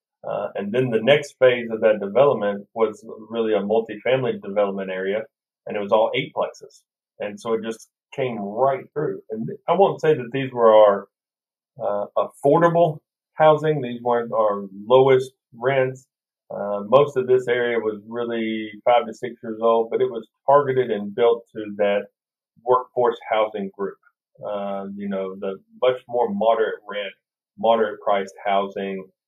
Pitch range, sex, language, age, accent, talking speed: 100-125 Hz, male, English, 40-59, American, 160 wpm